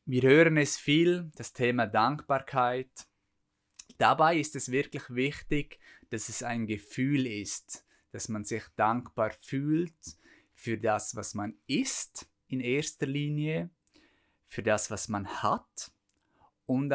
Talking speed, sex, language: 125 wpm, male, German